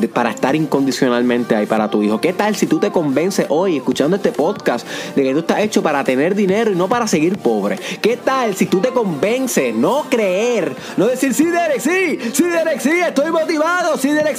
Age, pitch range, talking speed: 30-49, 160-255 Hz, 210 wpm